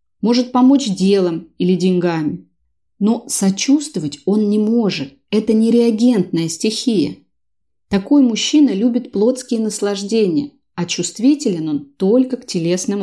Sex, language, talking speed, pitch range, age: female, Russian, 110 wpm, 180-240 Hz, 30-49